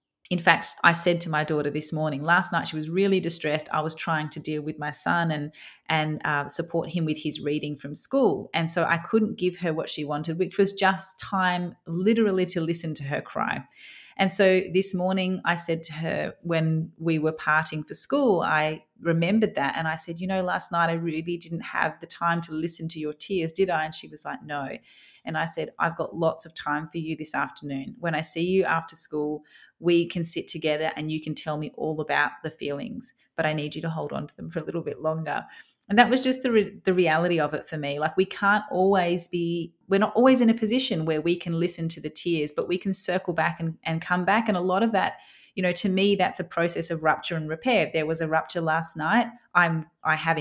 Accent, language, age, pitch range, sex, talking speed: Australian, English, 30-49, 155-185 Hz, female, 245 wpm